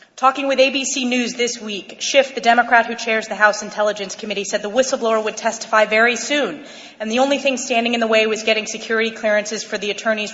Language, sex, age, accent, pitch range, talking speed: English, female, 30-49, American, 200-260 Hz, 215 wpm